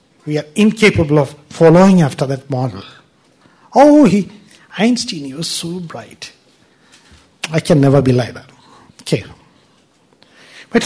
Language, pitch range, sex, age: English, 140-195 Hz, male, 60-79